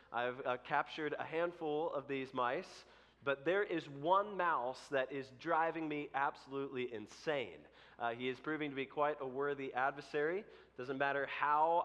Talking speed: 160 wpm